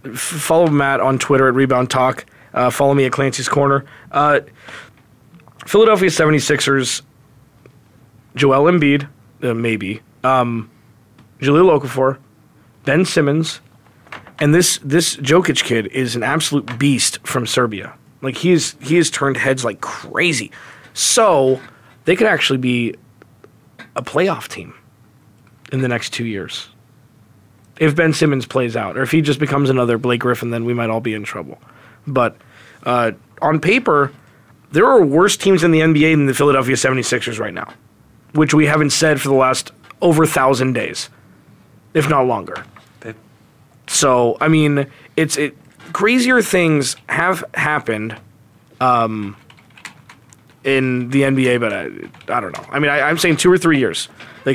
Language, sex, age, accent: English, male, 20-39, American